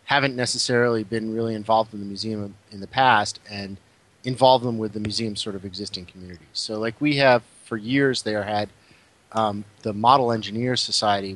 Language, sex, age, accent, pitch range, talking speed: English, male, 30-49, American, 100-115 Hz, 180 wpm